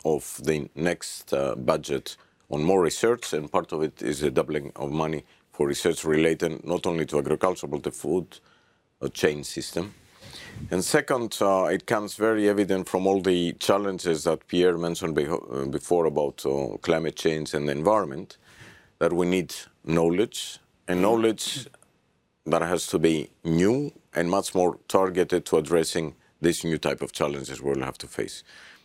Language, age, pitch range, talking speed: English, 50-69, 80-100 Hz, 160 wpm